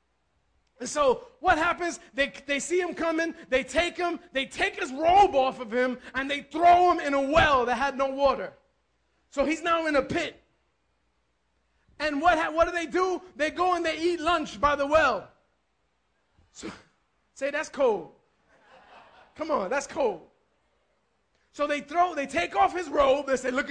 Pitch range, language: 270-330 Hz, English